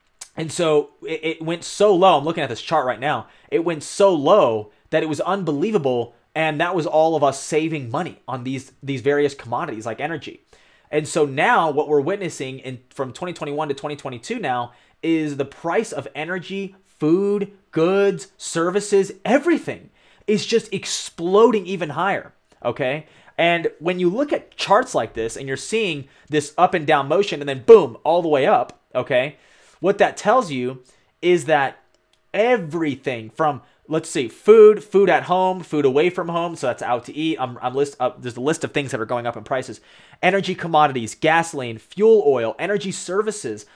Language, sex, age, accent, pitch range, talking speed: English, male, 30-49, American, 135-180 Hz, 180 wpm